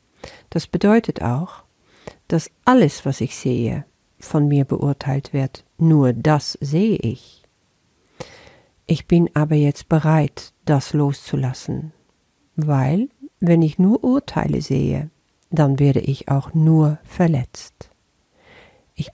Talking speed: 115 wpm